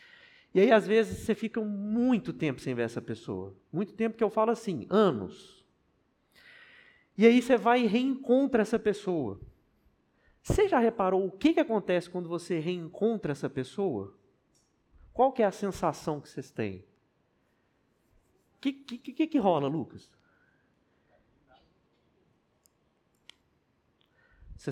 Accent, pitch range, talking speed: Brazilian, 135-225 Hz, 125 wpm